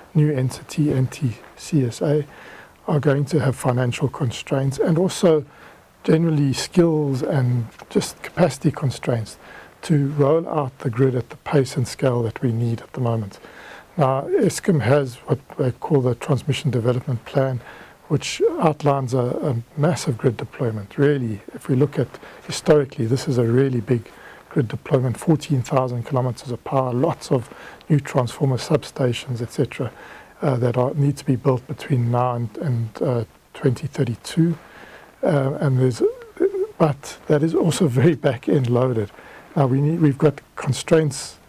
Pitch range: 125-150 Hz